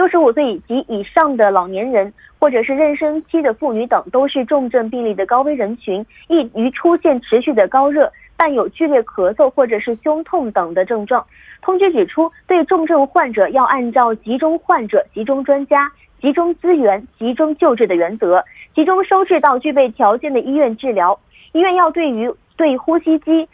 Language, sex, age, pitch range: Korean, female, 20-39, 235-325 Hz